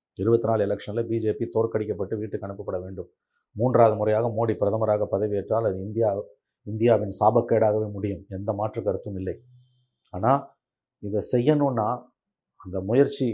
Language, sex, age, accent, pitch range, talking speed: Tamil, male, 30-49, native, 110-135 Hz, 120 wpm